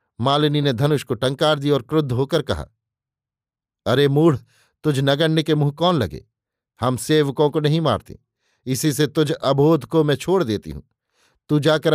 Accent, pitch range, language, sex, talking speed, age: native, 130-150 Hz, Hindi, male, 170 wpm, 50-69